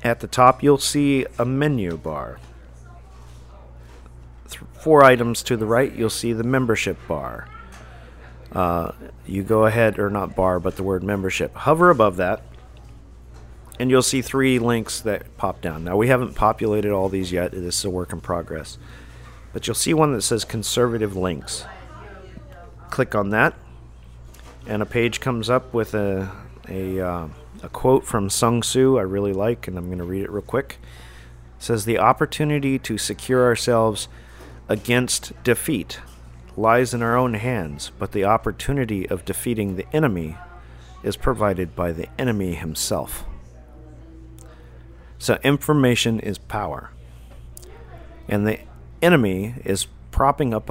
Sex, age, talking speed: male, 40-59, 150 wpm